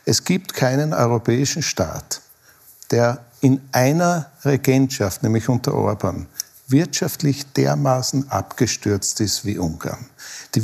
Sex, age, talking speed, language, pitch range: male, 60-79, 105 wpm, German, 120-165 Hz